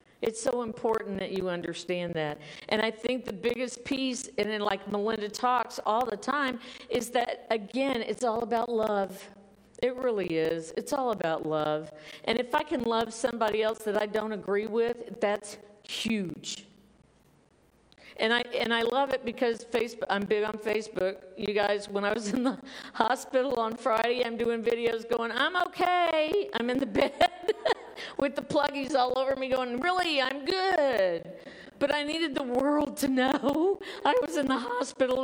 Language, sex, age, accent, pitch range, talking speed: English, female, 50-69, American, 205-270 Hz, 175 wpm